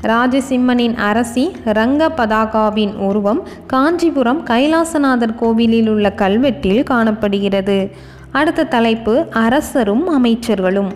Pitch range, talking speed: 210-265 Hz, 80 wpm